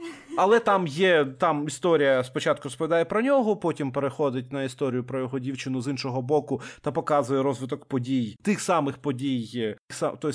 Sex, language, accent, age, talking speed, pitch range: male, Ukrainian, native, 30-49, 155 wpm, 125-155 Hz